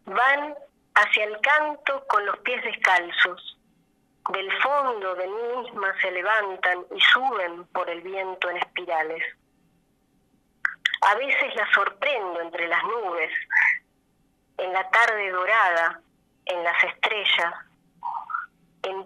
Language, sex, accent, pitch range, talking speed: Spanish, female, Argentinian, 180-235 Hz, 115 wpm